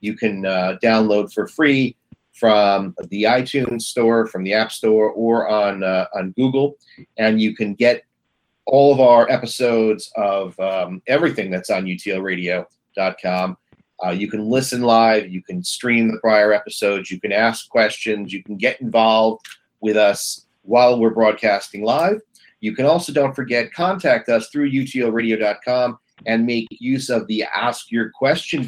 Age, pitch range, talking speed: 40-59, 110-135 Hz, 155 wpm